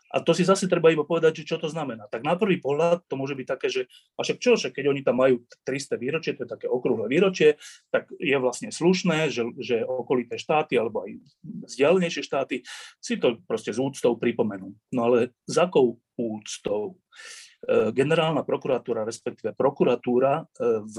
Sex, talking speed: male, 185 wpm